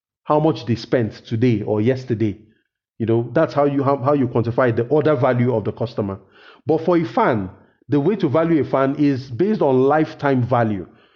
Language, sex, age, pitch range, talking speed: English, male, 40-59, 120-155 Hz, 200 wpm